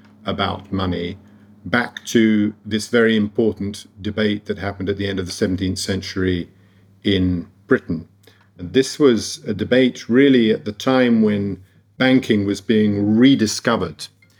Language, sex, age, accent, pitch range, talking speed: English, male, 50-69, British, 95-110 Hz, 140 wpm